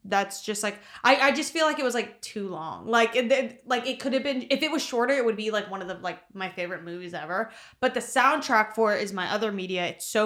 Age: 20-39